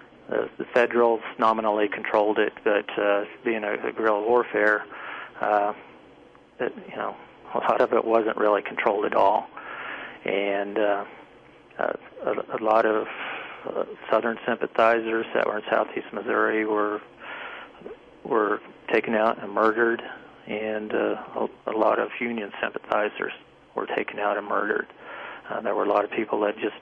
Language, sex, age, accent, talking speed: English, male, 40-59, American, 150 wpm